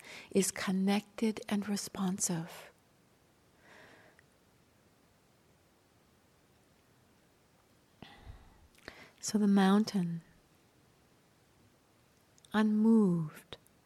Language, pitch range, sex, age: English, 175-215 Hz, female, 60-79